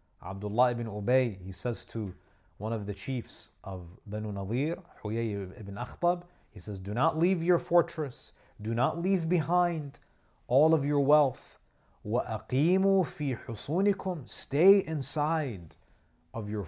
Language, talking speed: English, 125 wpm